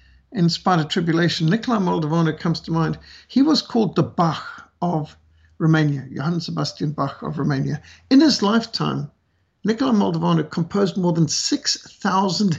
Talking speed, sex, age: 145 wpm, male, 60-79